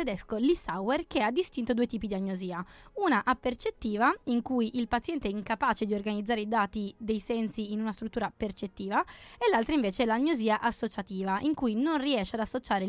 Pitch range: 210-270 Hz